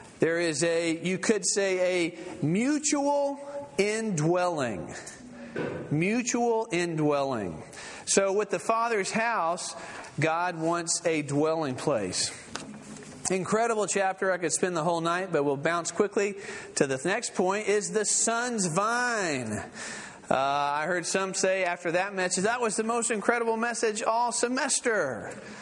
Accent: American